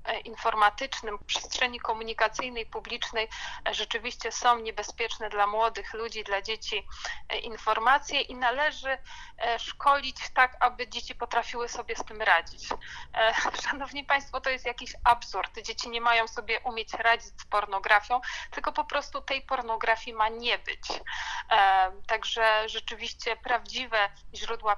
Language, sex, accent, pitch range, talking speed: Polish, female, native, 220-245 Hz, 125 wpm